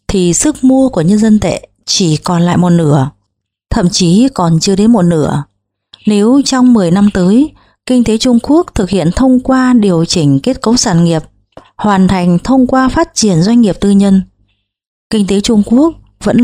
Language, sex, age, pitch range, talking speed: Vietnamese, female, 20-39, 165-235 Hz, 195 wpm